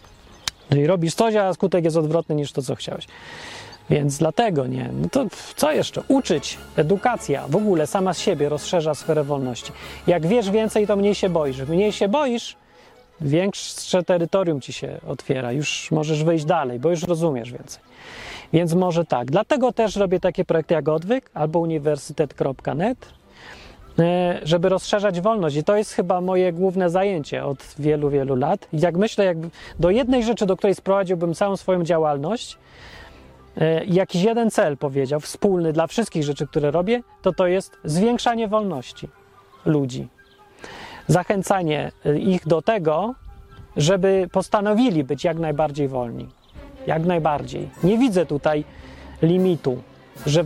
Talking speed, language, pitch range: 145 wpm, Polish, 150-195 Hz